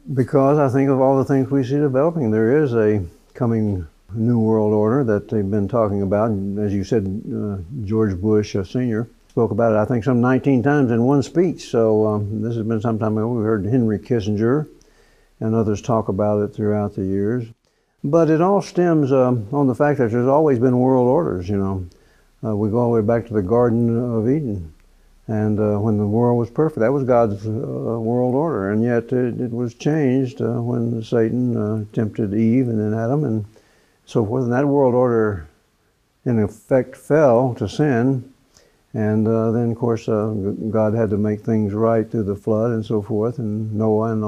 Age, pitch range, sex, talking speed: 60-79, 105-125 Hz, male, 205 wpm